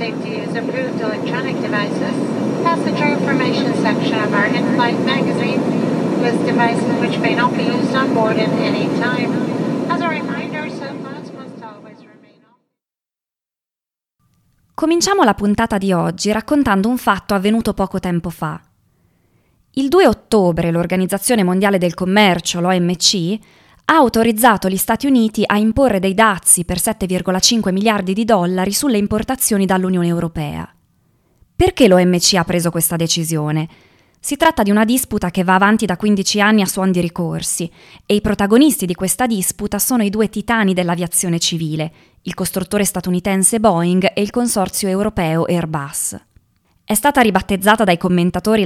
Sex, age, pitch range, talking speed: female, 20-39, 175-220 Hz, 145 wpm